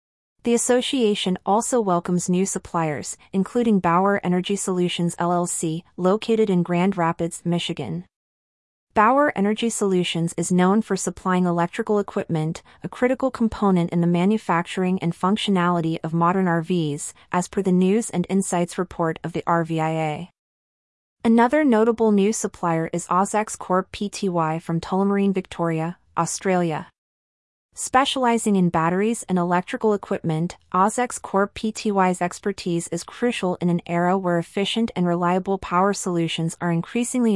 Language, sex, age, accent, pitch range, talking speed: English, female, 30-49, American, 170-205 Hz, 125 wpm